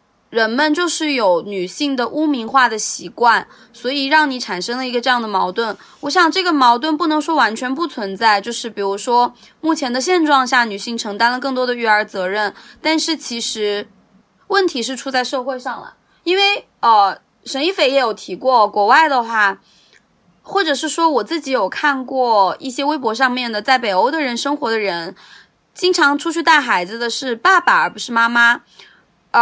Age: 20-39